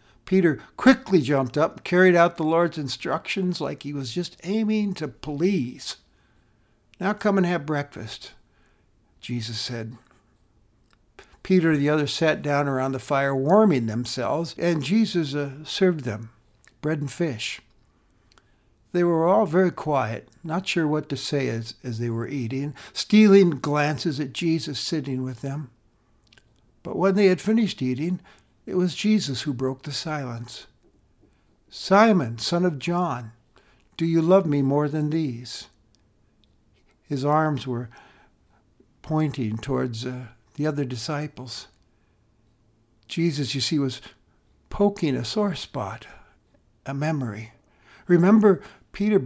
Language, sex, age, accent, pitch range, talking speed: English, male, 60-79, American, 120-175 Hz, 135 wpm